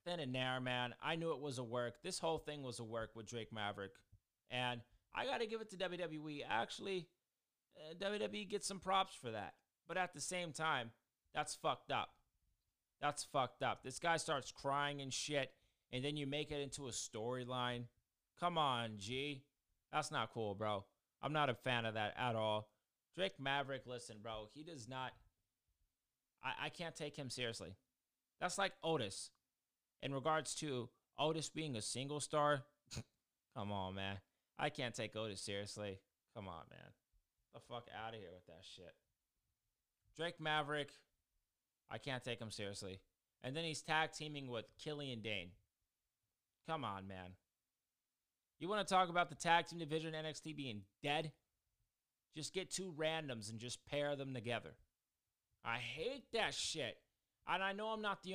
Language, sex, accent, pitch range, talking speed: English, male, American, 110-155 Hz, 170 wpm